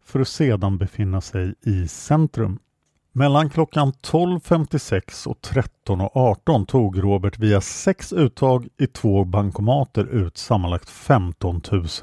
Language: English